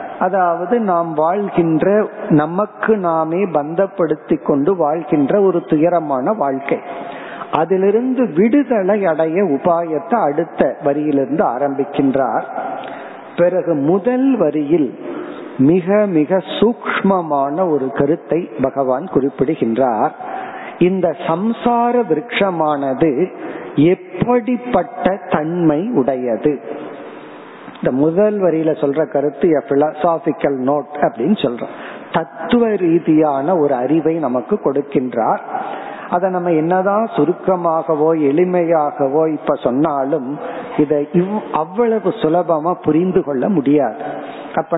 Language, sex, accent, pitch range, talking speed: Tamil, male, native, 150-200 Hz, 70 wpm